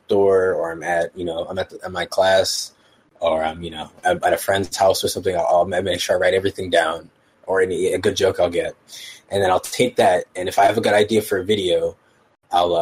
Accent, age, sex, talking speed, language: American, 20-39, male, 260 wpm, English